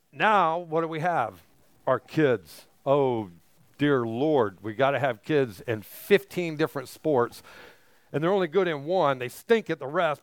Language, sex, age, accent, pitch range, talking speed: English, male, 50-69, American, 135-180 Hz, 175 wpm